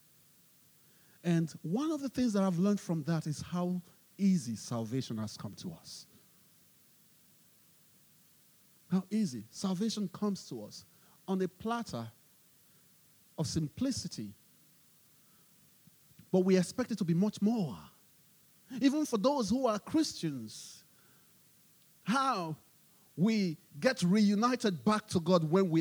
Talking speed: 120 wpm